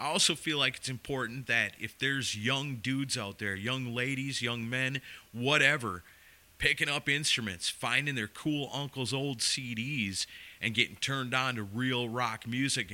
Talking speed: 160 wpm